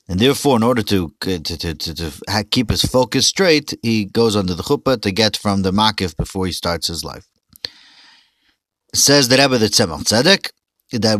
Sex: male